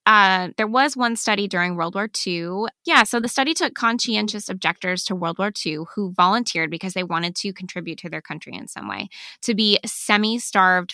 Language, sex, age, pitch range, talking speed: English, female, 20-39, 180-220 Hz, 195 wpm